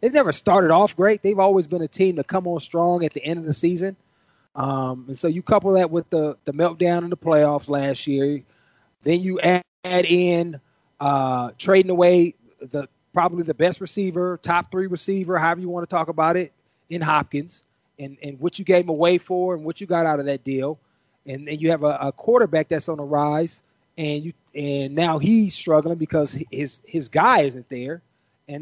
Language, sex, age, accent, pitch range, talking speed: English, male, 30-49, American, 150-185 Hz, 210 wpm